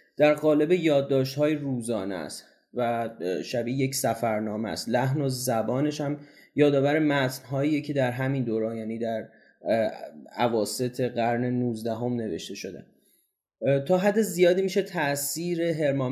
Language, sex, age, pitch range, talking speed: Persian, male, 30-49, 125-155 Hz, 125 wpm